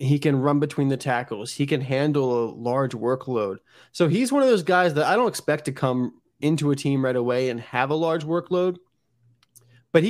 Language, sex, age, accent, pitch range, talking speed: English, male, 20-39, American, 125-150 Hz, 215 wpm